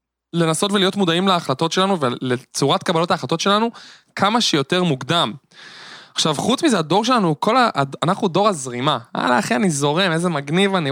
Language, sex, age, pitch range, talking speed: Hebrew, male, 20-39, 130-180 Hz, 155 wpm